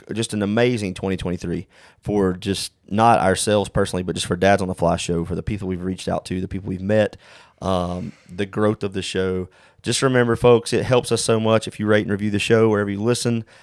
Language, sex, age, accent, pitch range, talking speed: English, male, 30-49, American, 95-110 Hz, 230 wpm